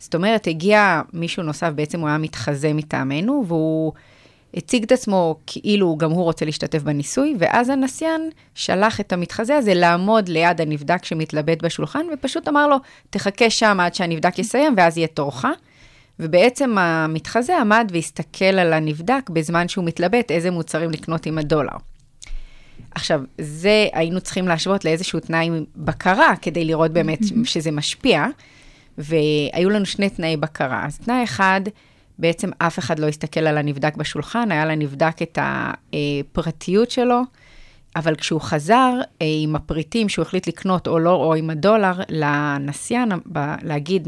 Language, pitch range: Hebrew, 160-205 Hz